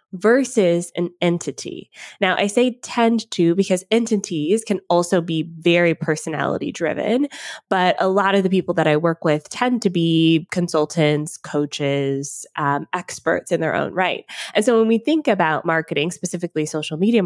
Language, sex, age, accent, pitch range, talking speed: English, female, 20-39, American, 160-210 Hz, 165 wpm